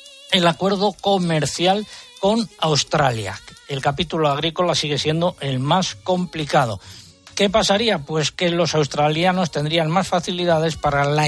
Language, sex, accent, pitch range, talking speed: Spanish, male, Spanish, 140-175 Hz, 130 wpm